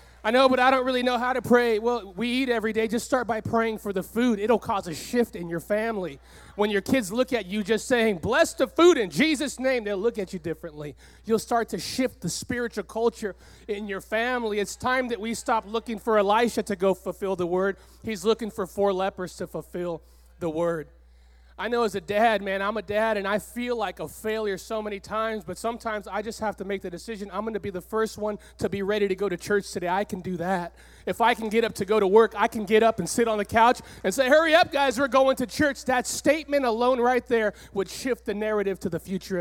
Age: 30-49